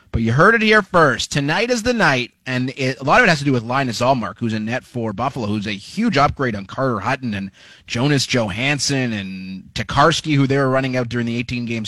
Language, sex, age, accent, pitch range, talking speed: English, male, 30-49, American, 120-165 Hz, 230 wpm